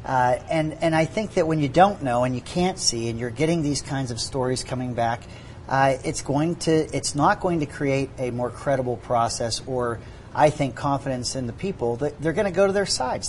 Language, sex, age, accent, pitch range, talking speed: English, male, 40-59, American, 120-155 Hz, 220 wpm